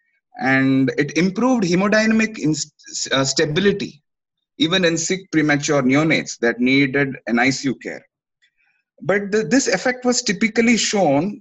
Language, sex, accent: English, male, Indian